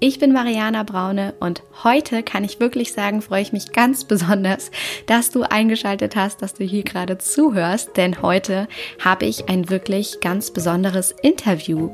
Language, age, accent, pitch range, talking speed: German, 20-39, German, 185-225 Hz, 165 wpm